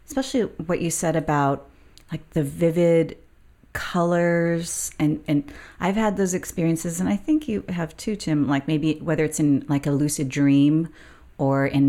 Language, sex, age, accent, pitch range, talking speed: English, female, 30-49, American, 140-165 Hz, 165 wpm